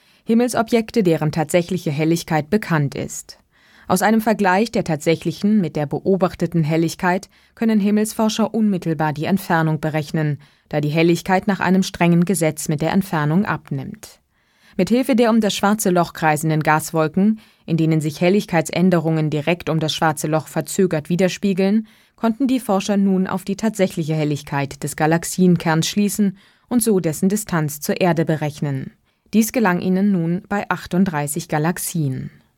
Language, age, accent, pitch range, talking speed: German, 20-39, German, 160-195 Hz, 140 wpm